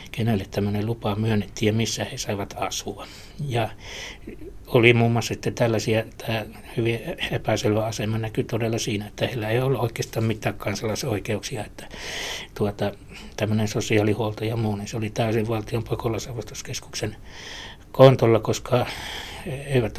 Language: Finnish